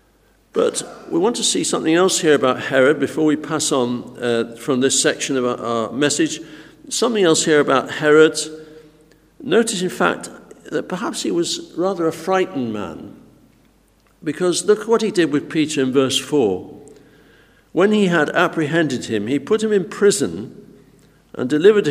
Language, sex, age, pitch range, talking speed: English, male, 60-79, 135-200 Hz, 165 wpm